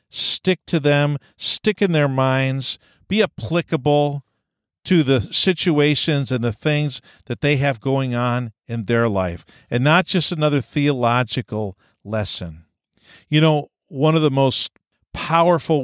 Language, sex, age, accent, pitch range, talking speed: English, male, 50-69, American, 110-155 Hz, 135 wpm